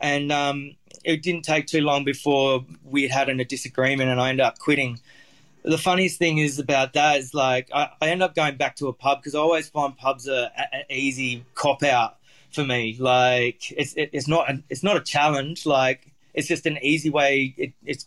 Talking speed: 215 wpm